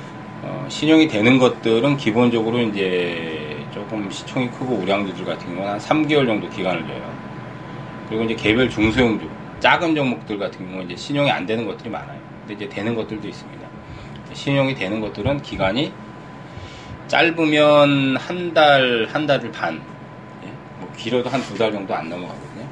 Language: Korean